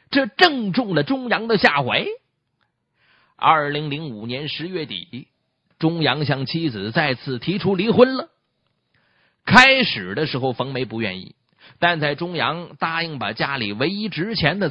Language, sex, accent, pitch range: Chinese, male, native, 120-195 Hz